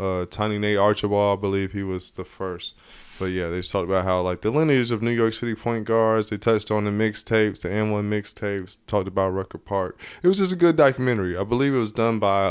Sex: male